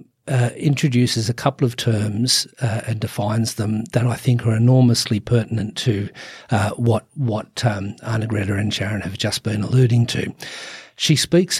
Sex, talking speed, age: male, 165 wpm, 50-69